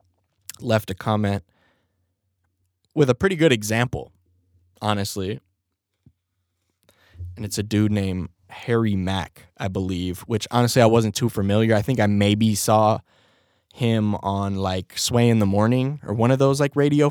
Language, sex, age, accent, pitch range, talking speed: English, male, 20-39, American, 95-120 Hz, 145 wpm